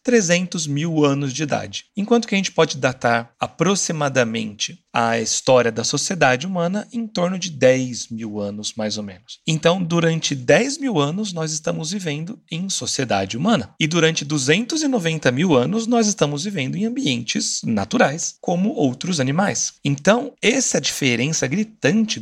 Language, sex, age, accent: Portuguese, male, 40-59, Brazilian